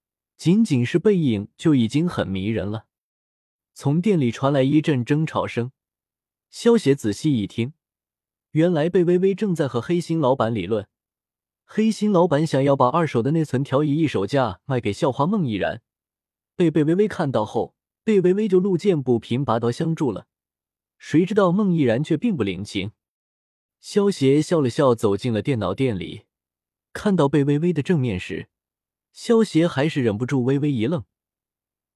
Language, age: Chinese, 20-39